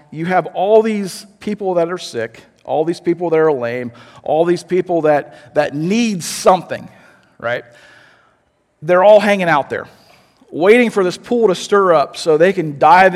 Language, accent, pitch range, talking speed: English, American, 140-185 Hz, 175 wpm